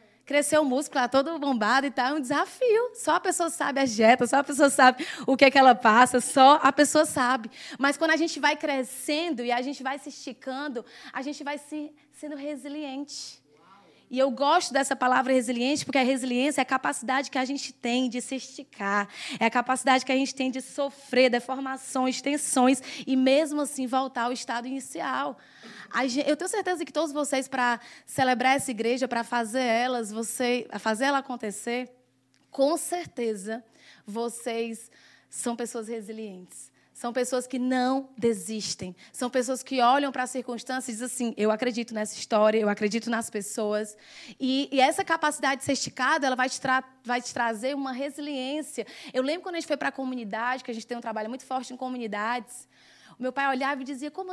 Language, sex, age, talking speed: Portuguese, female, 20-39, 190 wpm